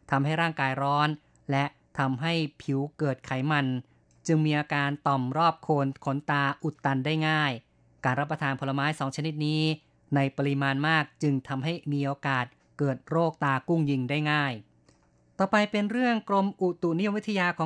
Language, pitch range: Thai, 140-160 Hz